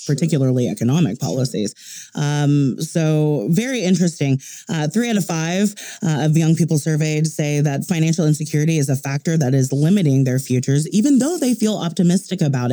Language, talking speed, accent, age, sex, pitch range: English, 165 wpm, American, 30-49, female, 130-155 Hz